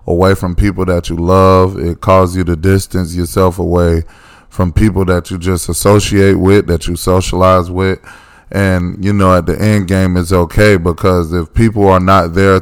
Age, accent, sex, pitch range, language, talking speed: 20-39, American, male, 90-105 Hz, English, 185 wpm